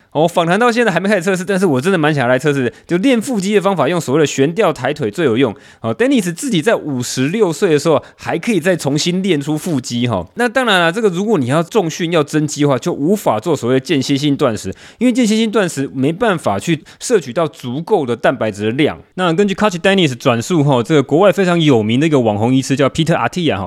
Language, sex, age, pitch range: Chinese, male, 20-39, 130-185 Hz